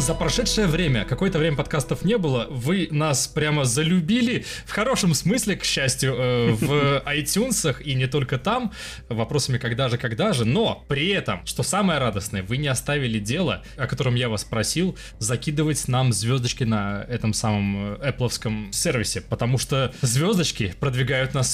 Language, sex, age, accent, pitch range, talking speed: Russian, male, 20-39, native, 115-160 Hz, 160 wpm